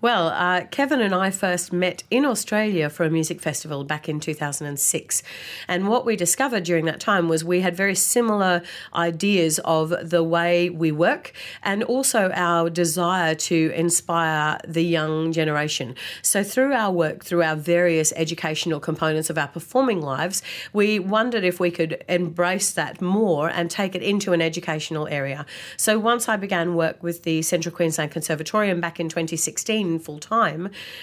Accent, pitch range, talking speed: Australian, 165-190 Hz, 165 wpm